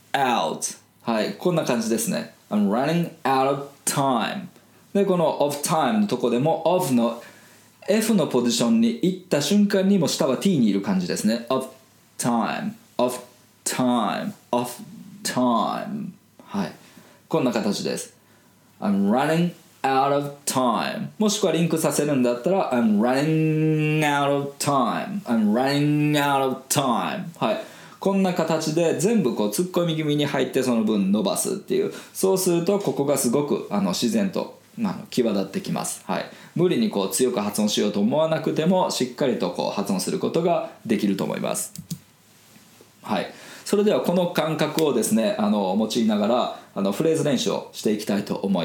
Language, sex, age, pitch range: Japanese, male, 20-39, 135-205 Hz